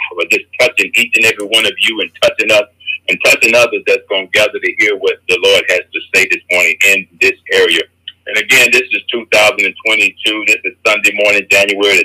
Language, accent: English, American